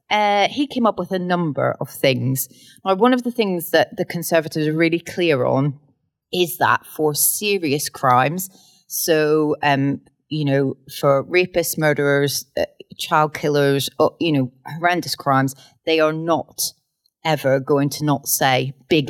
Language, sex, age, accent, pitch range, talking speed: English, female, 30-49, British, 135-175 Hz, 155 wpm